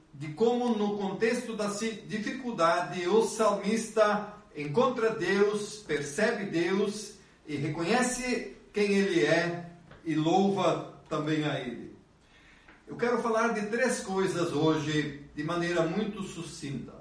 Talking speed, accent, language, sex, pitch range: 115 wpm, Brazilian, Portuguese, male, 150-215 Hz